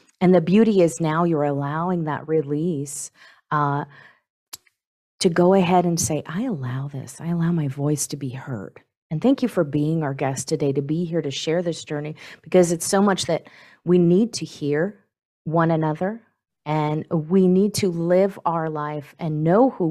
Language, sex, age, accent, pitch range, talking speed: English, female, 40-59, American, 145-175 Hz, 185 wpm